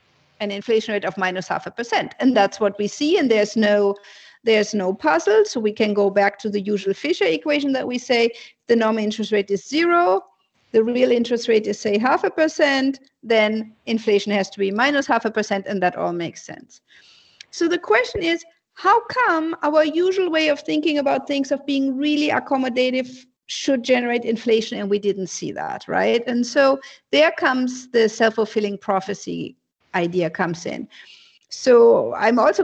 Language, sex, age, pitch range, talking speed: English, female, 50-69, 205-280 Hz, 185 wpm